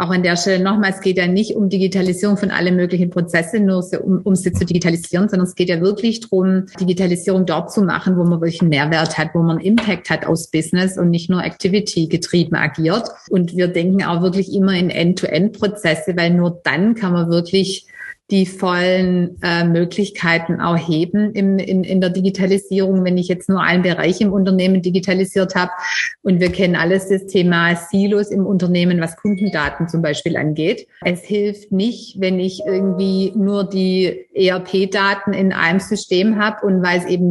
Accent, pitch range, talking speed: German, 180-195 Hz, 180 wpm